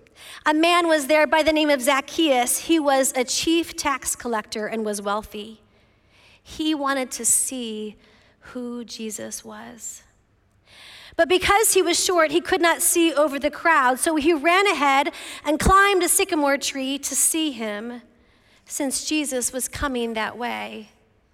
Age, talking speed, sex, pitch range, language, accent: 40-59, 155 wpm, female, 230-320 Hz, English, American